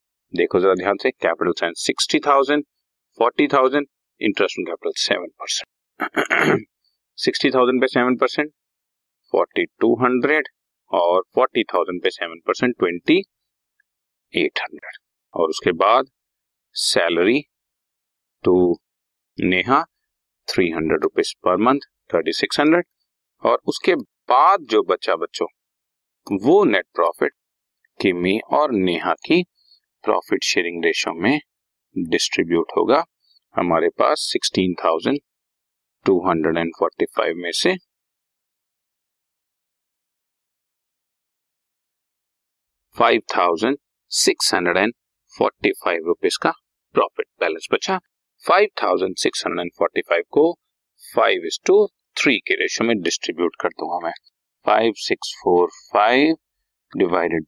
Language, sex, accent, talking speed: Hindi, male, native, 85 wpm